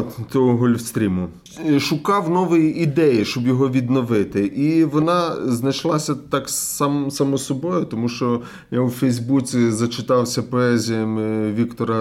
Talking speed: 115 wpm